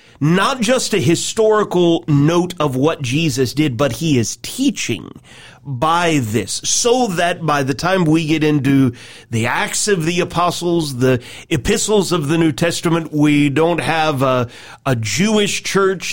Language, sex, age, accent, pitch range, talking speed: English, male, 40-59, American, 145-190 Hz, 155 wpm